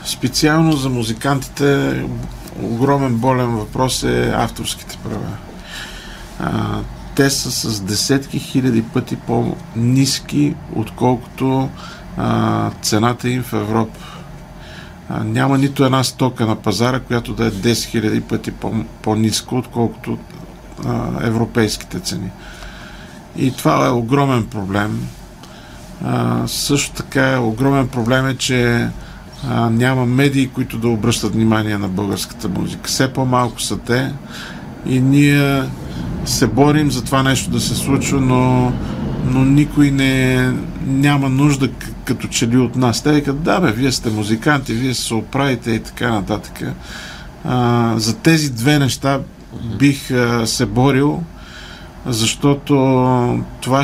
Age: 50-69